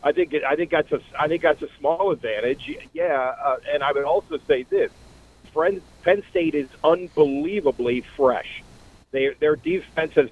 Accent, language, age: American, English, 50-69